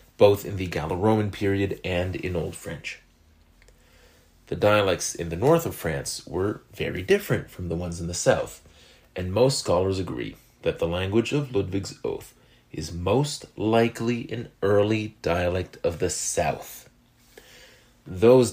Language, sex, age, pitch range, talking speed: English, male, 30-49, 90-120 Hz, 145 wpm